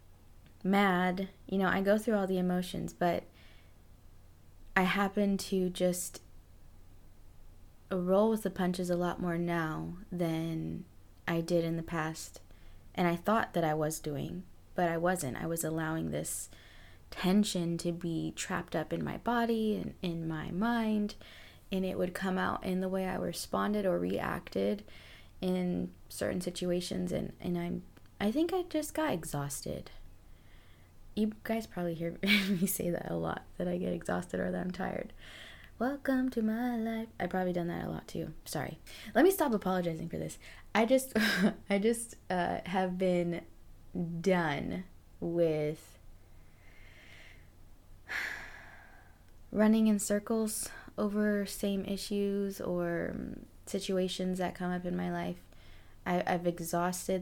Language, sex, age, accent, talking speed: English, female, 20-39, American, 145 wpm